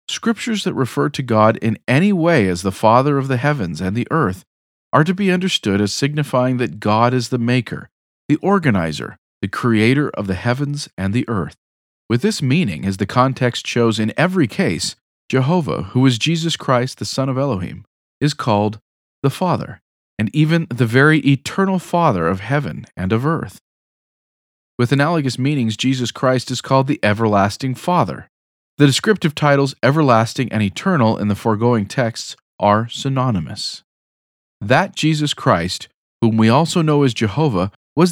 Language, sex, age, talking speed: English, male, 40-59, 165 wpm